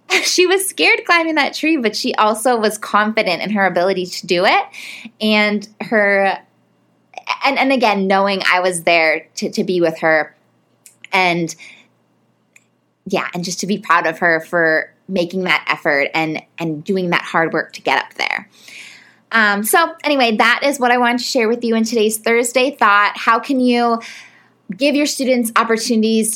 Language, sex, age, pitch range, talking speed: English, female, 20-39, 180-235 Hz, 175 wpm